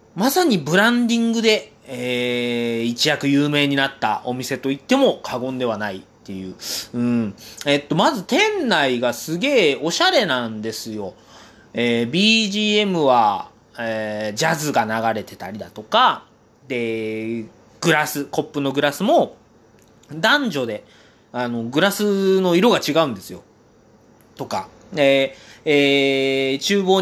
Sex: male